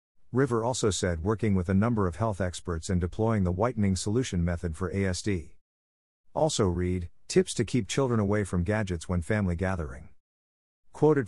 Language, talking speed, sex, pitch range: English, 165 wpm, male, 90-115 Hz